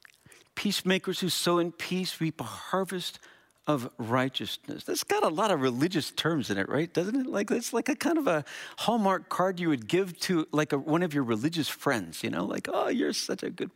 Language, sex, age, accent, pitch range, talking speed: English, male, 50-69, American, 180-260 Hz, 215 wpm